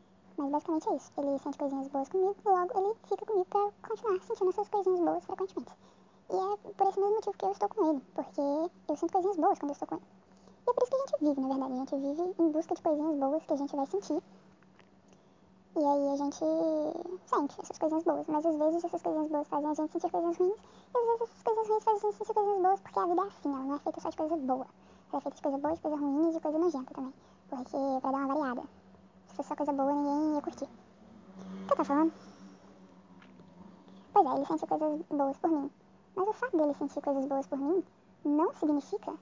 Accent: Brazilian